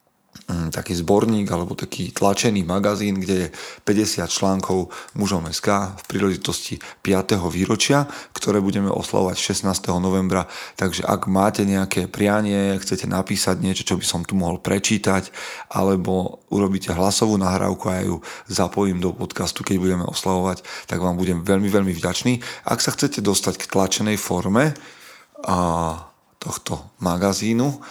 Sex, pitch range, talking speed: male, 90-100 Hz, 135 wpm